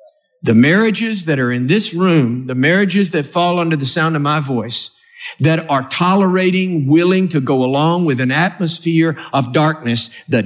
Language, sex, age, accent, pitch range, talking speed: English, male, 50-69, American, 135-185 Hz, 170 wpm